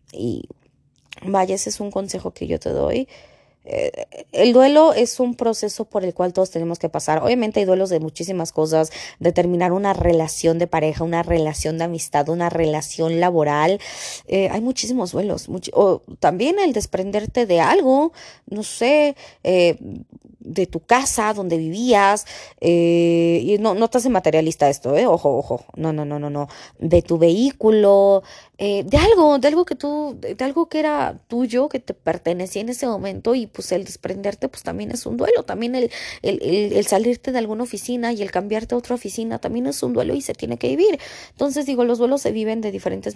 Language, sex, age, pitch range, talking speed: Spanish, female, 20-39, 170-245 Hz, 190 wpm